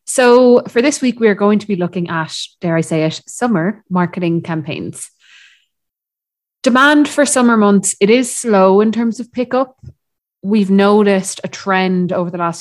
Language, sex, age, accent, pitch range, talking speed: English, female, 20-39, Irish, 165-200 Hz, 170 wpm